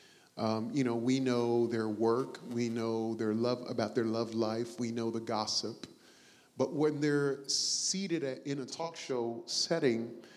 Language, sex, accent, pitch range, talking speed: English, male, American, 115-135 Hz, 170 wpm